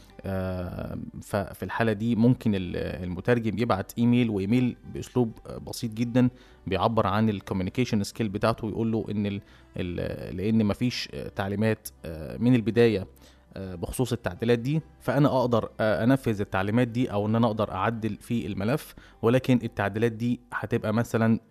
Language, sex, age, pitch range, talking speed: Arabic, male, 20-39, 100-120 Hz, 130 wpm